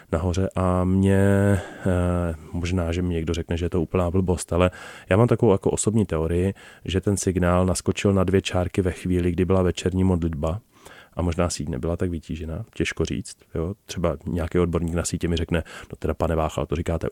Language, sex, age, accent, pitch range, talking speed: Czech, male, 30-49, native, 85-100 Hz, 195 wpm